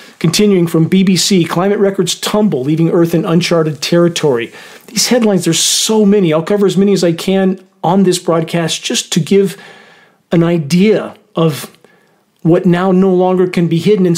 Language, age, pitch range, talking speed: English, 40-59, 160-190 Hz, 170 wpm